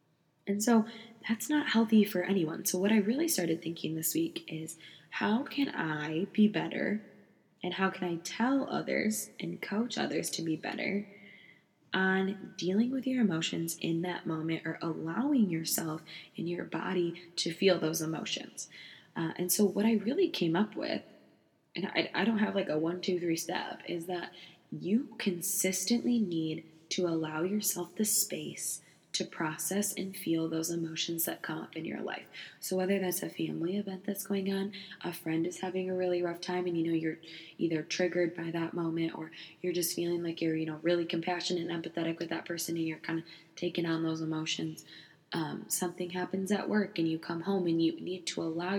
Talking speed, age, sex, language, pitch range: 190 wpm, 20-39, female, English, 165-195 Hz